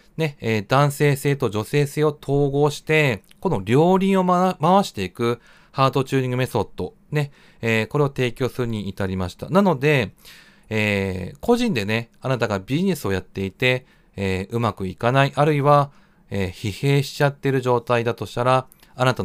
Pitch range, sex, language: 105-150 Hz, male, Japanese